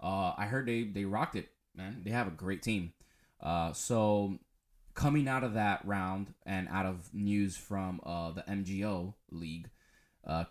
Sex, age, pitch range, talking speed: male, 10-29, 85-110 Hz, 170 wpm